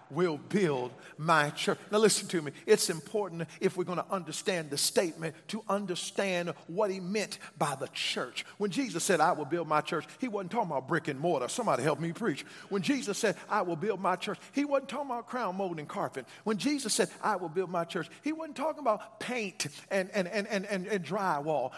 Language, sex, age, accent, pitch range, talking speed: English, male, 50-69, American, 180-255 Hz, 220 wpm